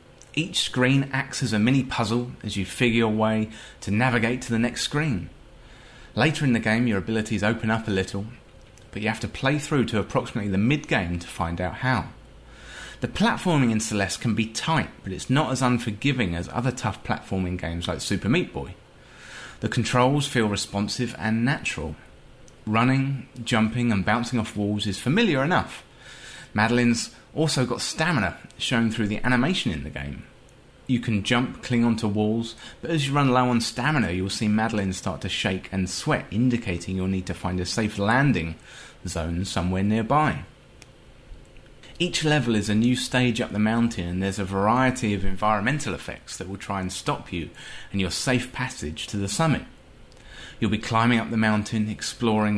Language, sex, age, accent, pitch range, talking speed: English, male, 30-49, British, 100-125 Hz, 180 wpm